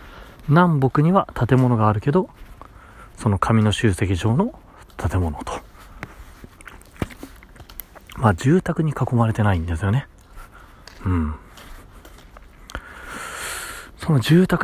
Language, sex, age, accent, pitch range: Japanese, male, 40-59, native, 85-120 Hz